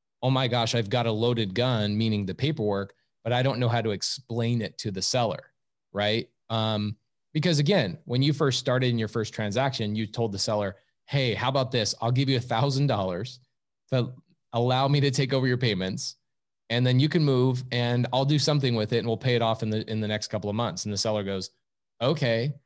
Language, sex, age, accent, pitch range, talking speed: English, male, 20-39, American, 105-130 Hz, 225 wpm